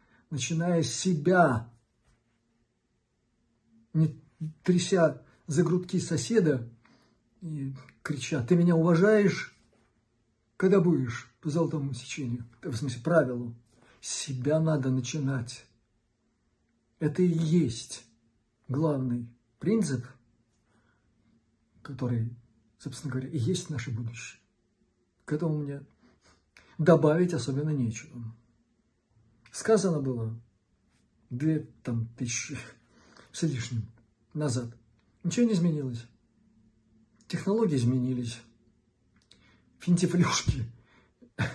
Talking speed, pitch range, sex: 85 wpm, 115-155 Hz, male